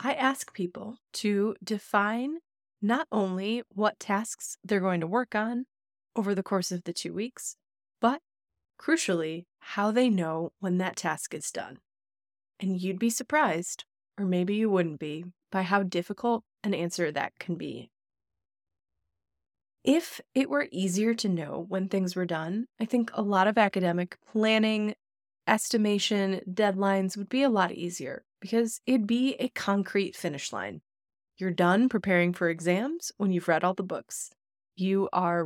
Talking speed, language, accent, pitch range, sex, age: 155 wpm, English, American, 180-225 Hz, female, 20-39